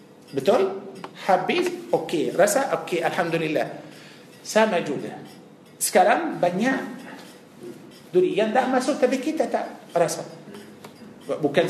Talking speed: 95 wpm